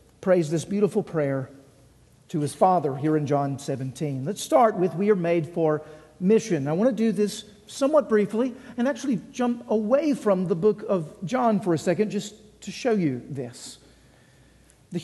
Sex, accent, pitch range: male, American, 185-245 Hz